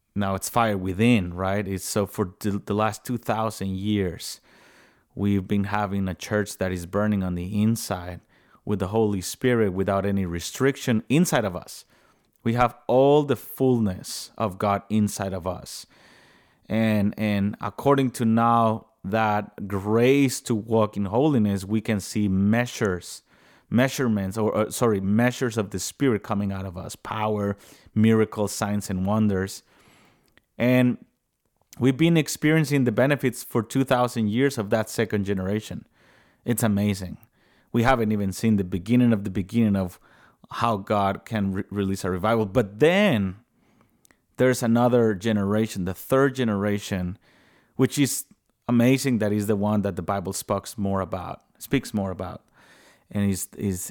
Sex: male